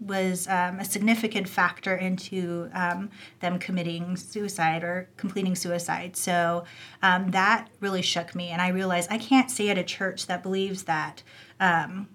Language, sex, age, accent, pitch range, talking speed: English, female, 30-49, American, 180-200 Hz, 160 wpm